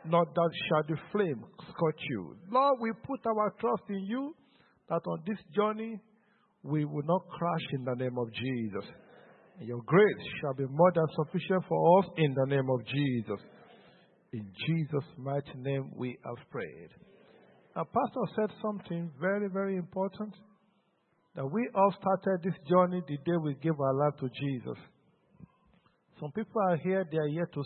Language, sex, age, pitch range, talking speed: English, male, 50-69, 145-190 Hz, 165 wpm